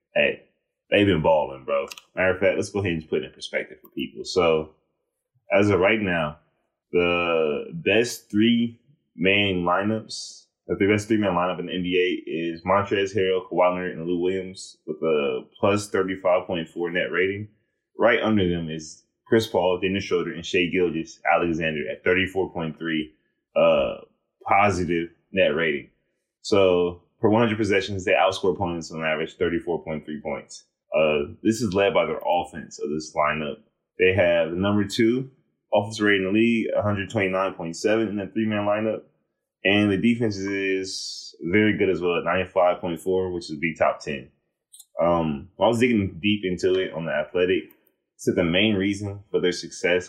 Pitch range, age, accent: 85-105 Hz, 20-39, American